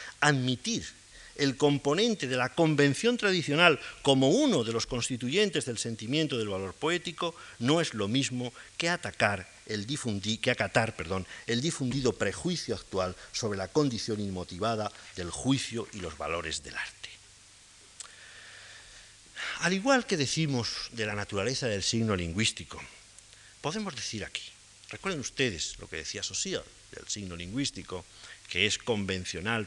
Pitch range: 105-155 Hz